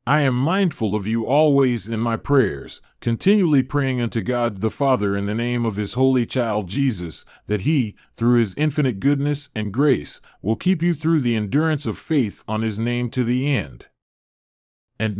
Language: English